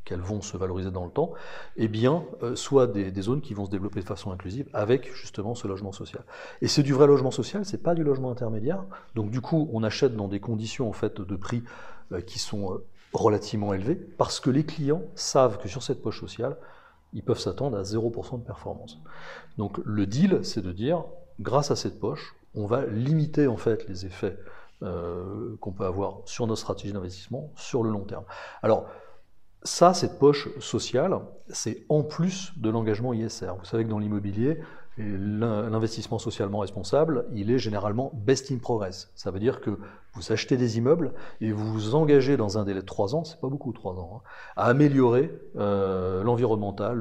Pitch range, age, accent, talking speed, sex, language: 100-130 Hz, 40-59, French, 195 wpm, male, French